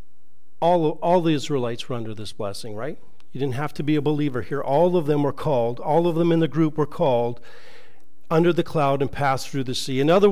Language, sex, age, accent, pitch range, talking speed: English, male, 50-69, American, 120-170 Hz, 235 wpm